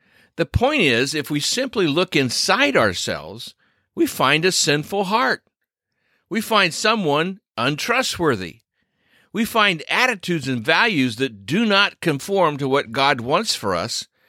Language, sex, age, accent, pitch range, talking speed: English, male, 50-69, American, 125-200 Hz, 140 wpm